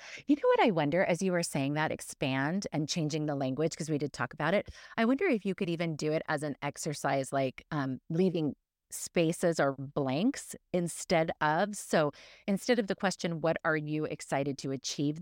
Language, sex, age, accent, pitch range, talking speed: English, female, 30-49, American, 150-185 Hz, 200 wpm